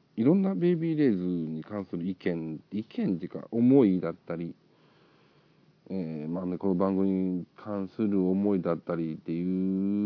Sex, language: male, Japanese